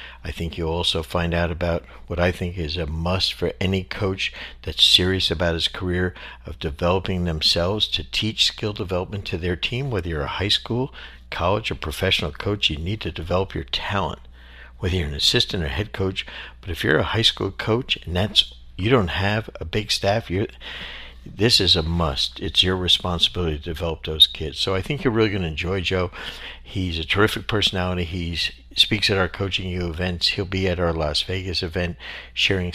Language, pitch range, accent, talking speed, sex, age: English, 80-95 Hz, American, 200 wpm, male, 60-79